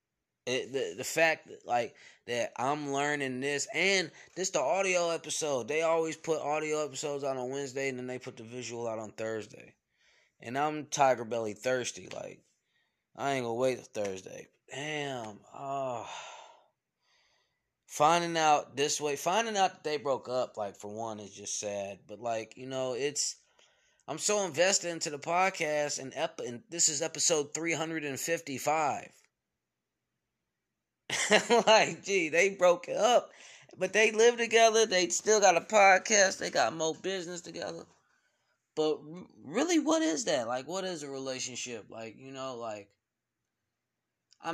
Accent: American